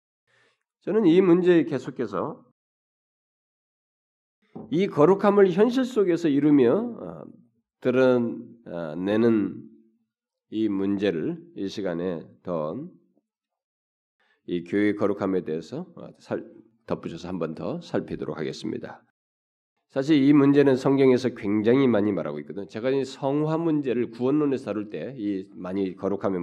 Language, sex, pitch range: Korean, male, 100-150 Hz